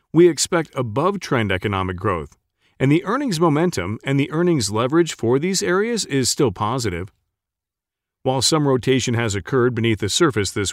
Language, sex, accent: English, male, American